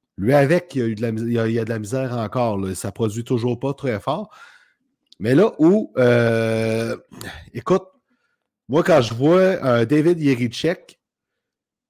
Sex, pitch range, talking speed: male, 115-145 Hz, 155 wpm